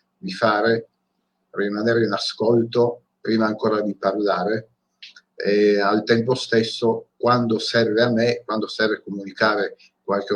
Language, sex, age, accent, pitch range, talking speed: Italian, male, 50-69, native, 100-115 Hz, 120 wpm